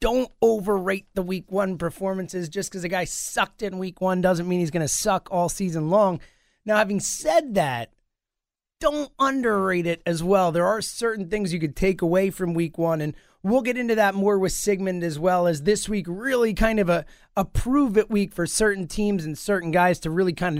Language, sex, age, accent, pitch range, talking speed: English, male, 30-49, American, 170-215 Hz, 210 wpm